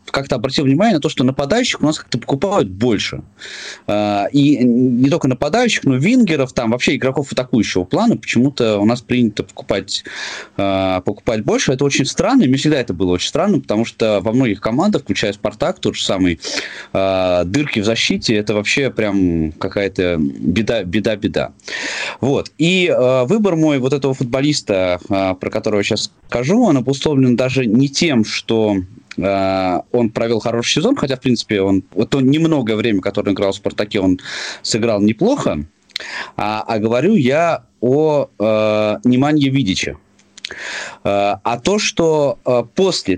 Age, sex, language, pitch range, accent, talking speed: 20-39, male, Russian, 105-140 Hz, native, 150 wpm